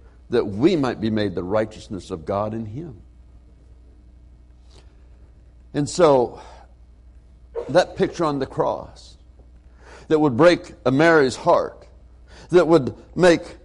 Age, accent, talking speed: 60-79, American, 115 wpm